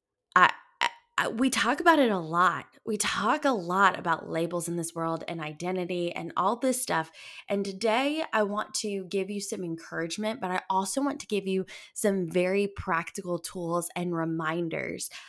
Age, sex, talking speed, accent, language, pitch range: 20-39, female, 170 wpm, American, English, 165-205 Hz